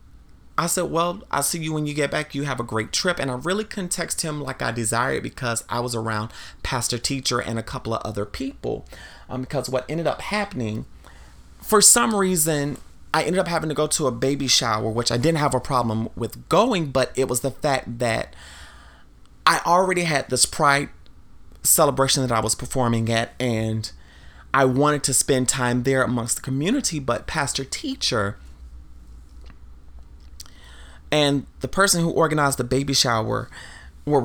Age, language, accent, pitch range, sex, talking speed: 30-49, English, American, 110-140 Hz, male, 180 wpm